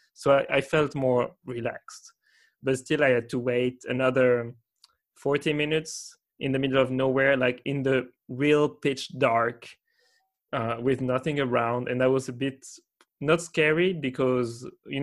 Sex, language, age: male, English, 20-39